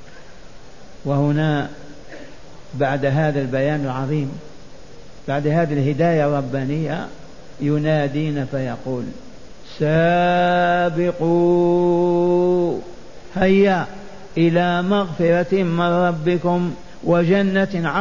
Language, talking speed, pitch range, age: Arabic, 60 wpm, 165-195 Hz, 50-69